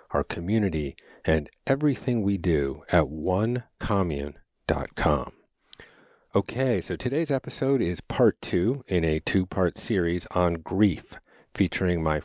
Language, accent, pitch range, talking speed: English, American, 80-110 Hz, 120 wpm